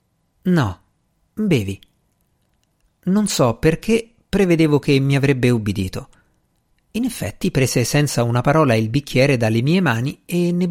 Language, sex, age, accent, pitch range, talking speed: Italian, male, 50-69, native, 120-160 Hz, 130 wpm